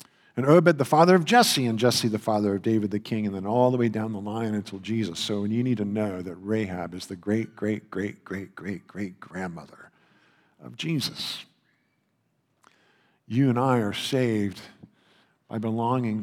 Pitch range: 100-125 Hz